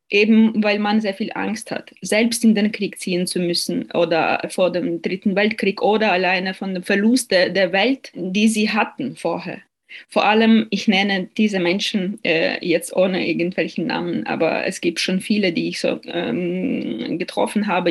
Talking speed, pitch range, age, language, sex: 180 wpm, 190-235 Hz, 20-39, German, female